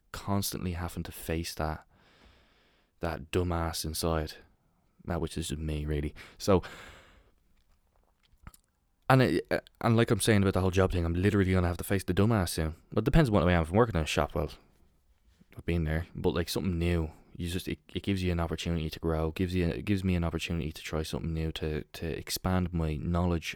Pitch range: 80-95 Hz